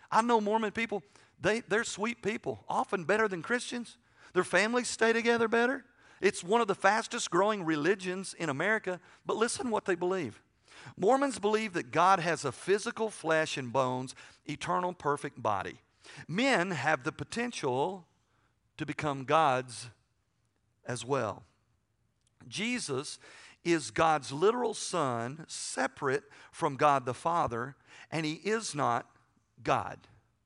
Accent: American